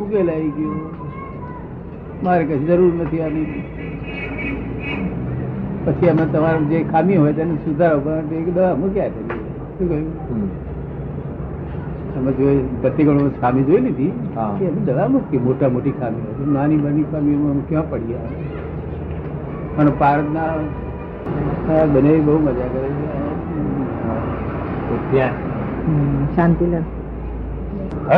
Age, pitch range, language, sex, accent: 60-79, 130-165 Hz, English, male, Indian